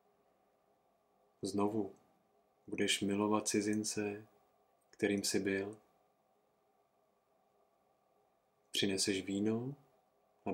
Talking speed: 55 wpm